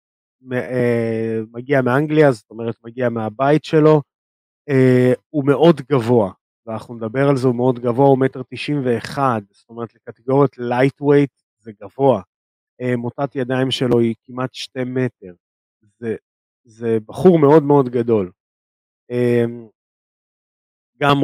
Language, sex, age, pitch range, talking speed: Hebrew, male, 30-49, 110-130 Hz, 115 wpm